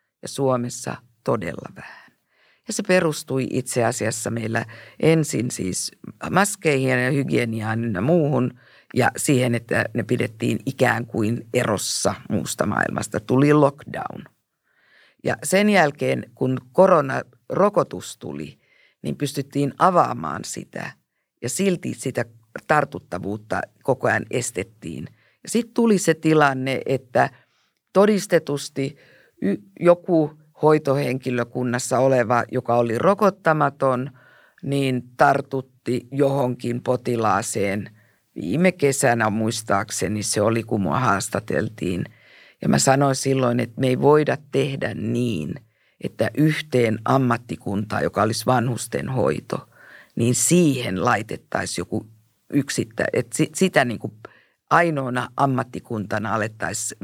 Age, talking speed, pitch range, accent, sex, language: 50-69, 100 wpm, 115-145 Hz, native, female, Finnish